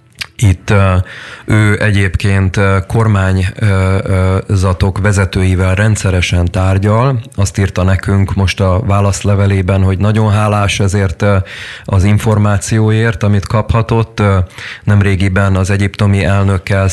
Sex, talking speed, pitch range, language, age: male, 90 wpm, 95-105 Hz, Hungarian, 30-49